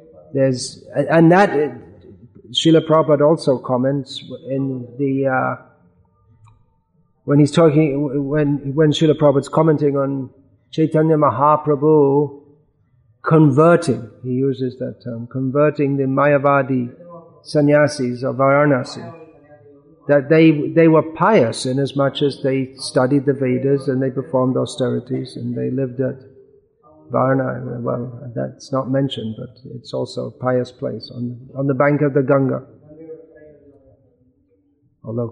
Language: English